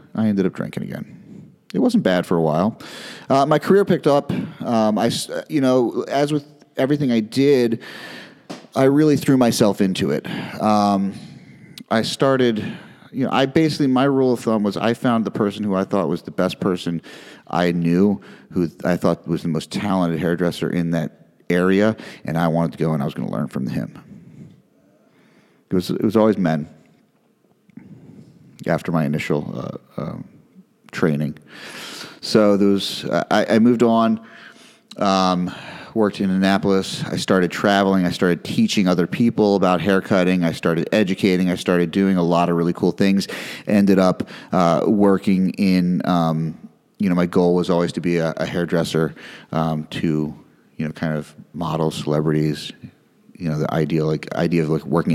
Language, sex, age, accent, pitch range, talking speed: English, male, 40-59, American, 85-120 Hz, 175 wpm